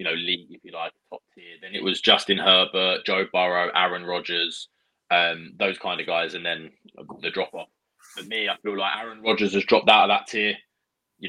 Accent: British